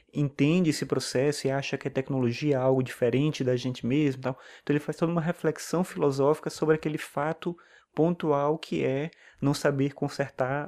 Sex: male